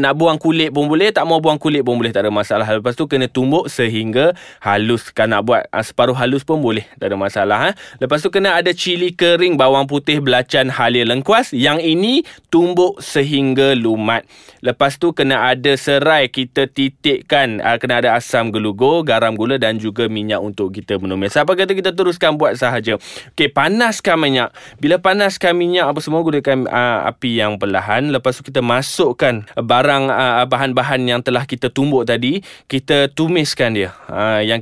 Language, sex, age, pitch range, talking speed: Malay, male, 20-39, 120-145 Hz, 175 wpm